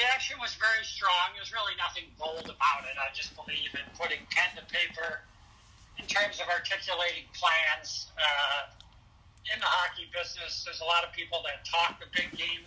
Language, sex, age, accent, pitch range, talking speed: English, male, 60-79, American, 145-180 Hz, 185 wpm